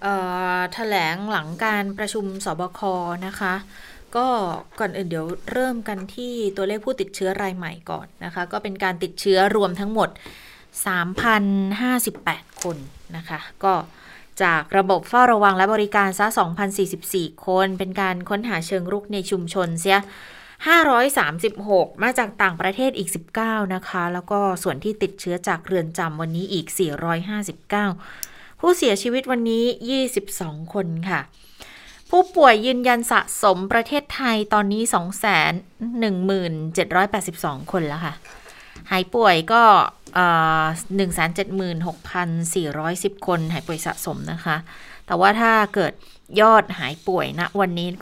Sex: female